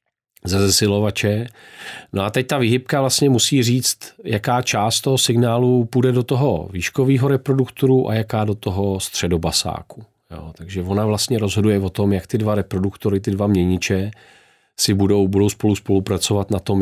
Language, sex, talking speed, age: Czech, male, 155 wpm, 40-59